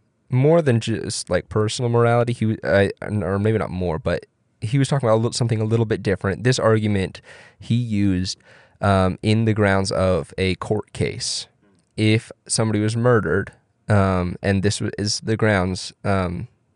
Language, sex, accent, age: English, male, American, 20-39